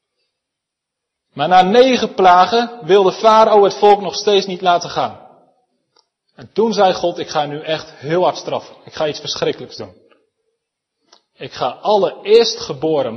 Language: Dutch